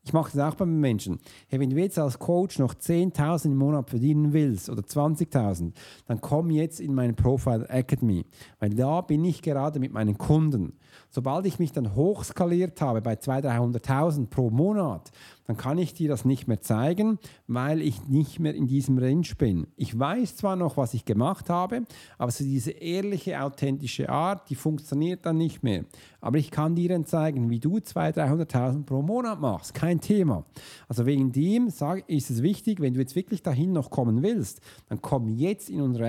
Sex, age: male, 50-69